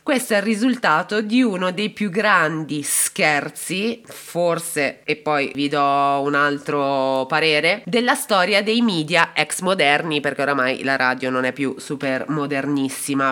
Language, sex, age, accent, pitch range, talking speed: Italian, female, 20-39, native, 155-245 Hz, 150 wpm